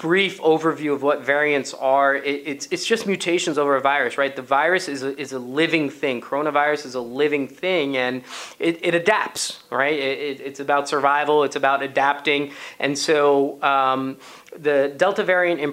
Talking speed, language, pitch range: 180 wpm, English, 135-155 Hz